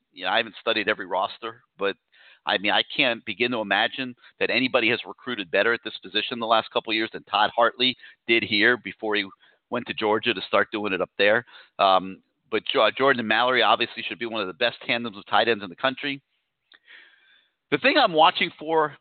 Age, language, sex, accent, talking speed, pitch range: 40-59, English, male, American, 215 wpm, 115-165 Hz